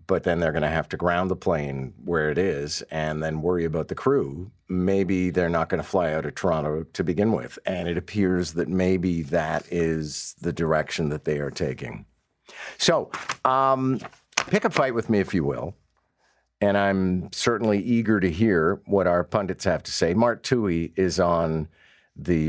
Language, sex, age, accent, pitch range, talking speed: English, male, 50-69, American, 85-125 Hz, 190 wpm